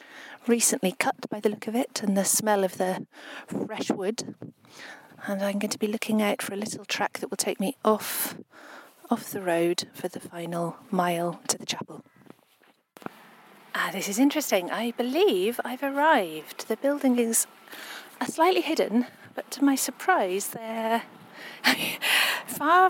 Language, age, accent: English, 40-59, British